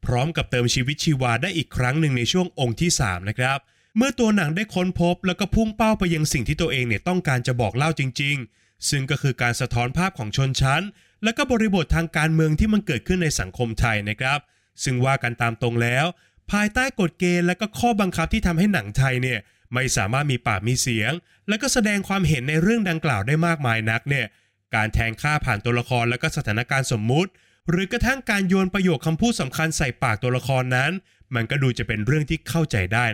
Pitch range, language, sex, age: 120-180 Hz, Thai, male, 20-39